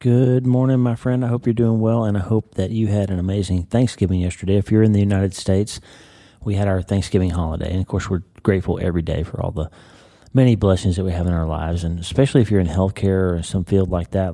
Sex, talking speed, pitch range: male, 245 wpm, 85-100 Hz